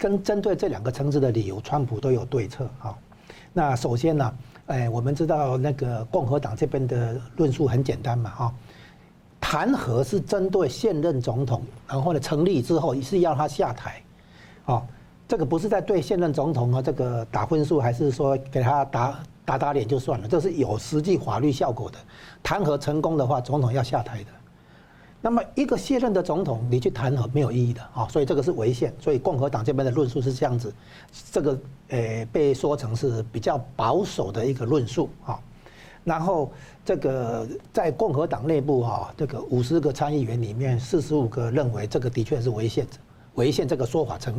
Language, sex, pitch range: Chinese, male, 120-150 Hz